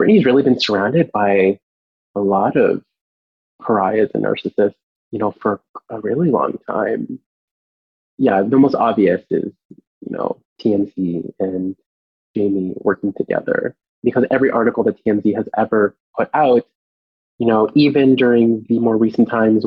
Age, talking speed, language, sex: 20-39, 145 wpm, English, male